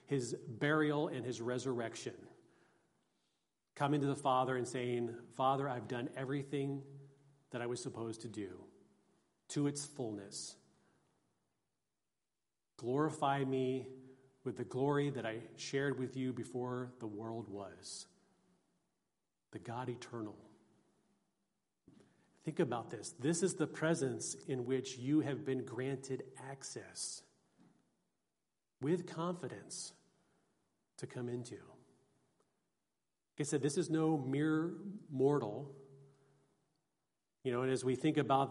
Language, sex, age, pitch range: English, male, 40-59, 120-140 Hz